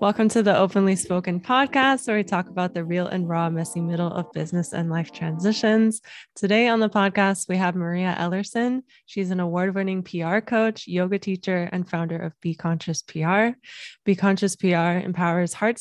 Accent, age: American, 20-39